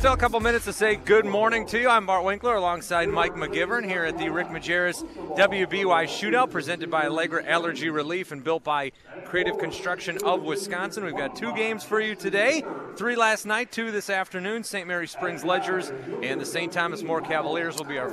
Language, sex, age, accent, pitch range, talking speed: English, male, 30-49, American, 160-200 Hz, 200 wpm